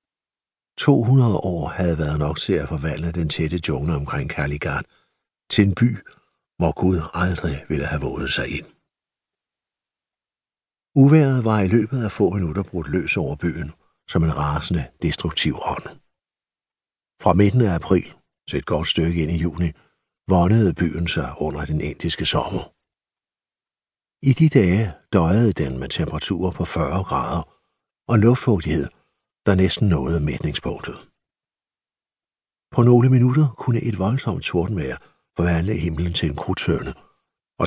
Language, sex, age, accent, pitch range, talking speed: Danish, male, 60-79, native, 80-105 Hz, 140 wpm